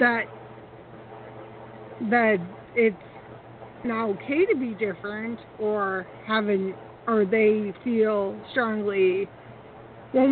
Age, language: 50-69, English